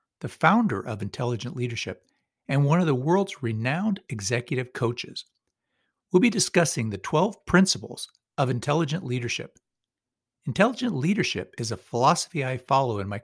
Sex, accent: male, American